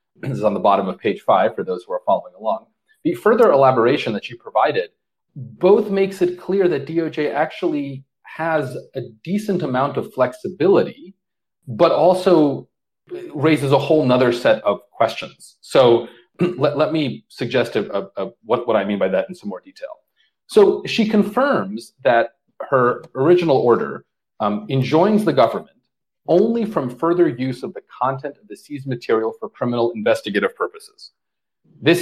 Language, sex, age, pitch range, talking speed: English, male, 30-49, 125-200 Hz, 165 wpm